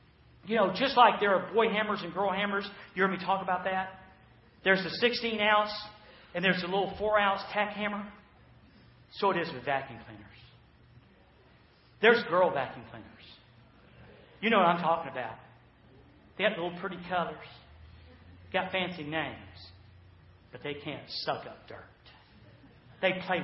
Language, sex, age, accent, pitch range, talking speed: English, male, 50-69, American, 145-225 Hz, 150 wpm